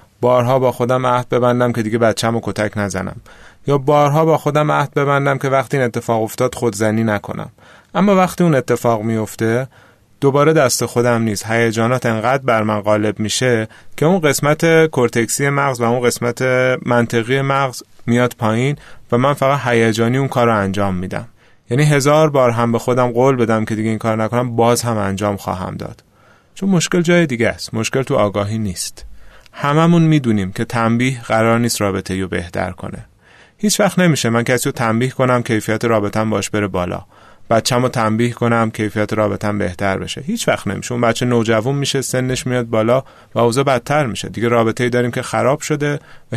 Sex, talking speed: male, 185 wpm